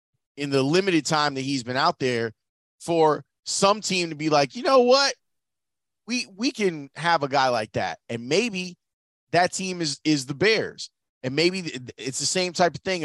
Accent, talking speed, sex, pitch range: American, 195 wpm, male, 125-165 Hz